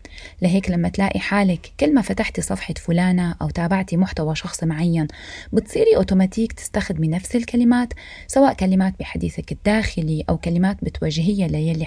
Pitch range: 165-225 Hz